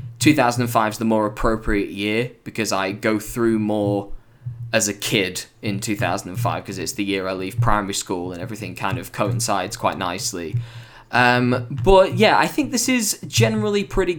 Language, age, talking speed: English, 10-29, 170 wpm